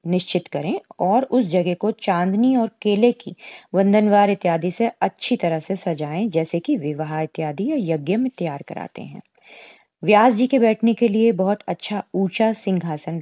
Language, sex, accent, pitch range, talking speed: Hindi, female, native, 165-225 Hz, 165 wpm